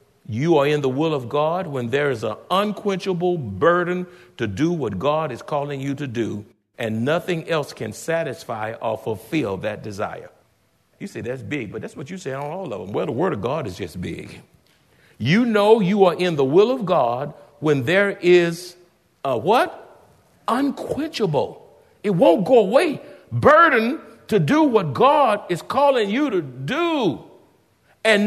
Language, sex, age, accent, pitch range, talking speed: English, male, 60-79, American, 145-205 Hz, 175 wpm